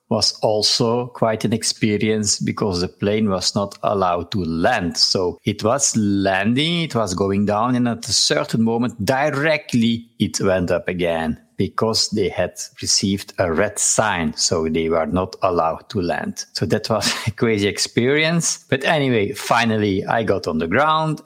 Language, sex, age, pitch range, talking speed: English, male, 50-69, 95-120 Hz, 165 wpm